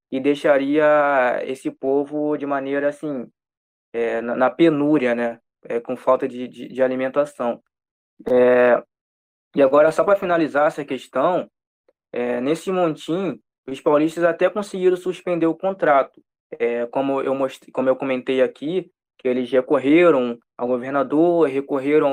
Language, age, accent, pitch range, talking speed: Portuguese, 20-39, Brazilian, 135-165 Hz, 140 wpm